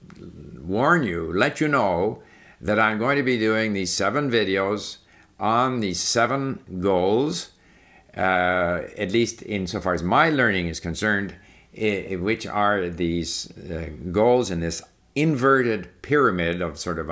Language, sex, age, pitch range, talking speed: English, male, 60-79, 90-120 Hz, 145 wpm